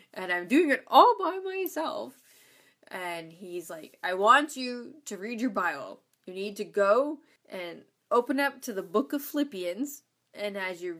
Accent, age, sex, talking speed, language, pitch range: American, 20-39, female, 175 wpm, English, 190-270 Hz